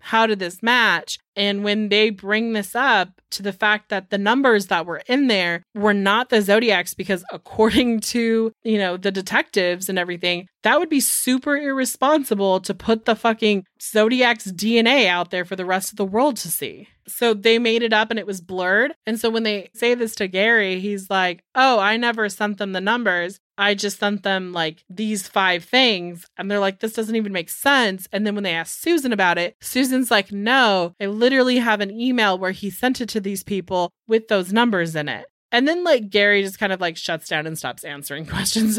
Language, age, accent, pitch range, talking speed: English, 20-39, American, 190-230 Hz, 215 wpm